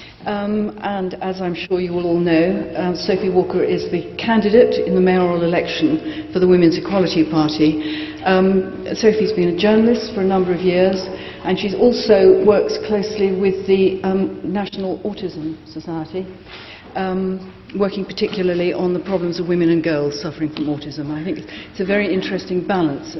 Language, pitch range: English, 165-205 Hz